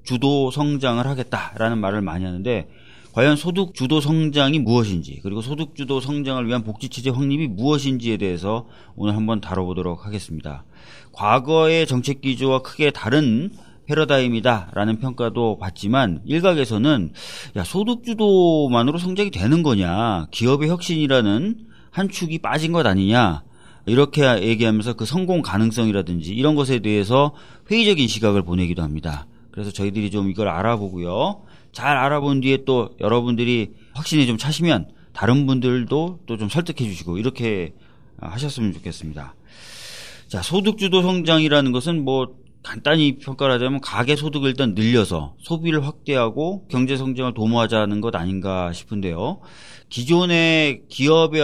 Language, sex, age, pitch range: Korean, male, 40-59, 105-150 Hz